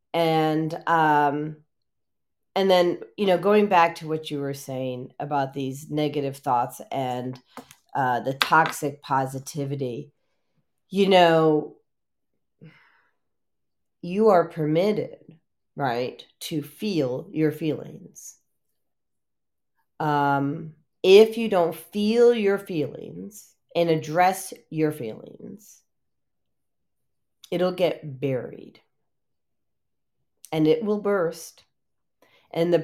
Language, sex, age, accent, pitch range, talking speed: English, female, 40-59, American, 145-180 Hz, 95 wpm